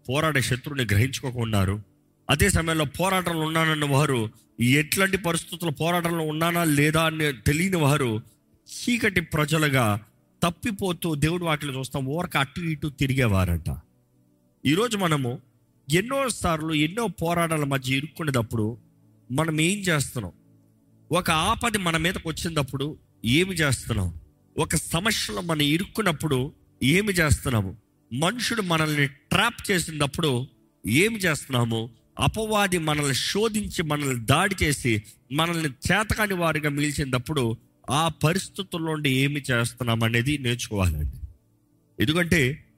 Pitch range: 120-170 Hz